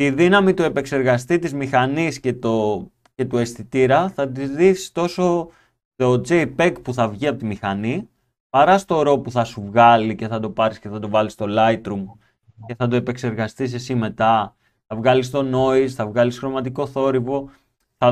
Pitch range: 115-160 Hz